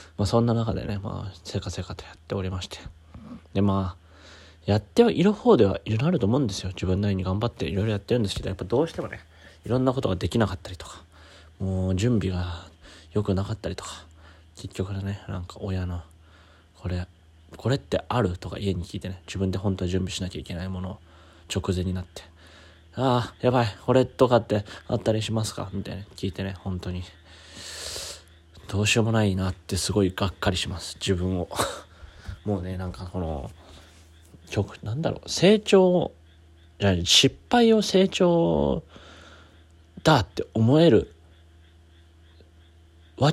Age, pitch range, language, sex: 20-39, 85-105 Hz, Japanese, male